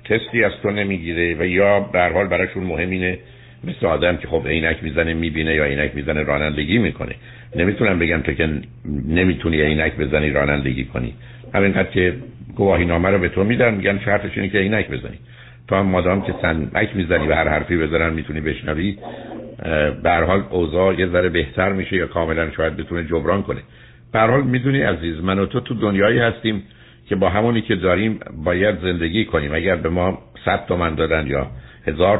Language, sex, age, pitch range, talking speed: Persian, male, 60-79, 80-100 Hz, 180 wpm